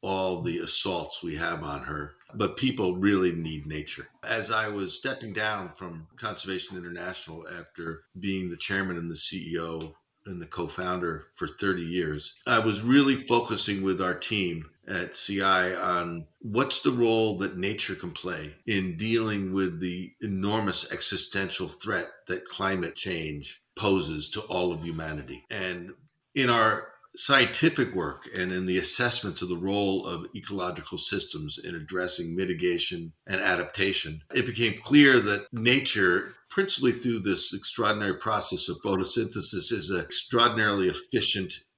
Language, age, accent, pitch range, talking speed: English, 50-69, American, 85-115 Hz, 145 wpm